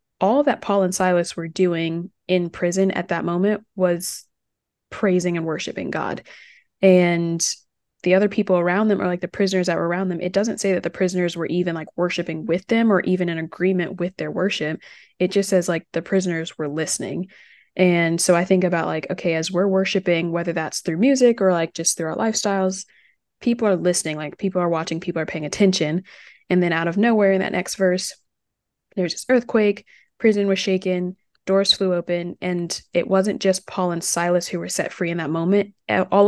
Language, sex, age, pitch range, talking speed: English, female, 20-39, 170-195 Hz, 200 wpm